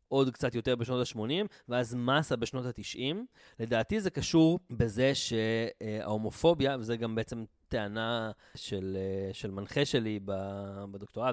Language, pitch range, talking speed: Hebrew, 110-145 Hz, 120 wpm